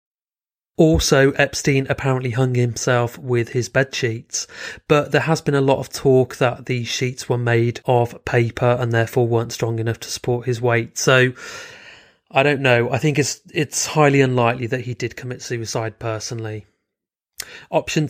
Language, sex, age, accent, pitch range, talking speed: English, male, 30-49, British, 115-135 Hz, 165 wpm